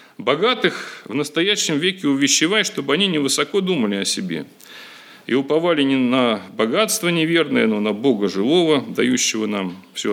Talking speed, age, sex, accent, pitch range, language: 150 wpm, 40-59, male, native, 125-185 Hz, Russian